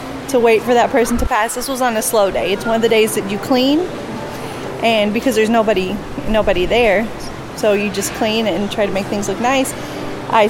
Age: 30-49